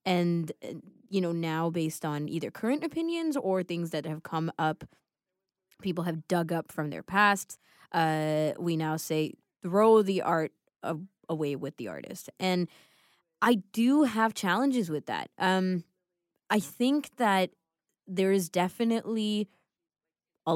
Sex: female